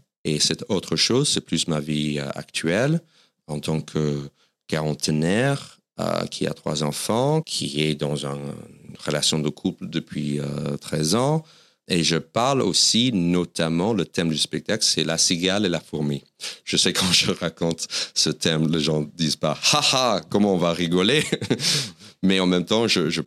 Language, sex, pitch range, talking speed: French, male, 75-85 Hz, 180 wpm